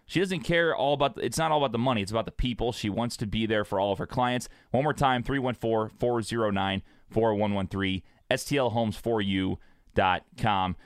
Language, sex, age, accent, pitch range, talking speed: English, male, 30-49, American, 100-130 Hz, 170 wpm